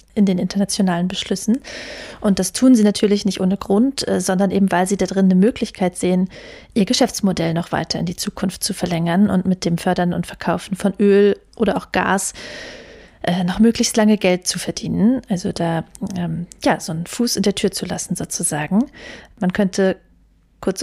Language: German